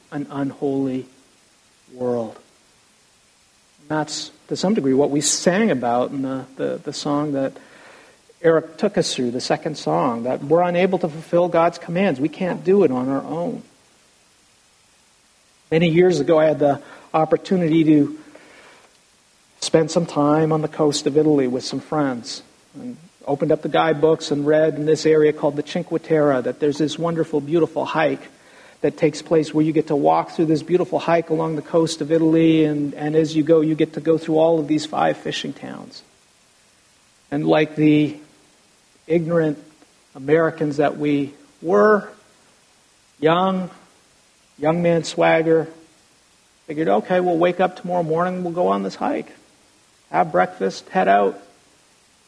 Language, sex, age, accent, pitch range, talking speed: English, male, 50-69, American, 145-165 Hz, 160 wpm